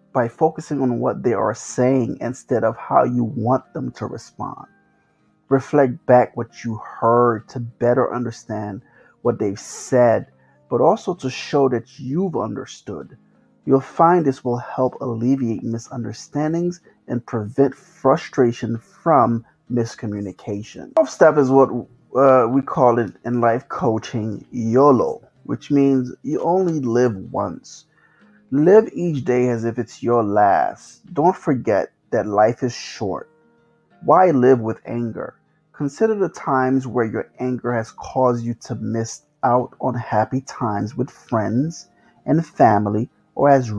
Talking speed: 140 wpm